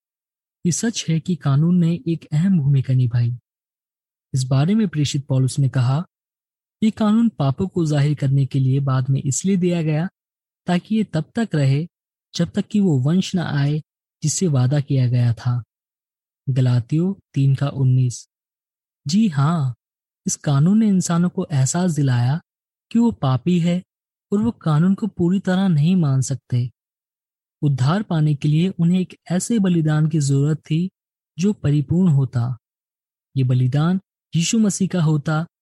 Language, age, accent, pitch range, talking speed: Hindi, 20-39, native, 135-180 Hz, 155 wpm